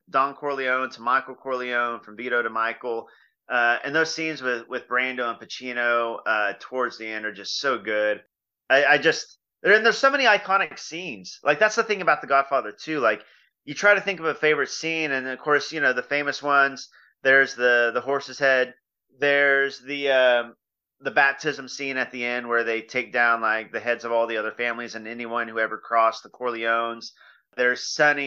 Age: 30-49